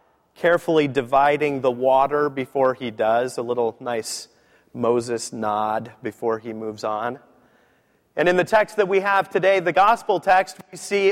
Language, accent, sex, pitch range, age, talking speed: English, American, male, 135-195 Hz, 30-49, 155 wpm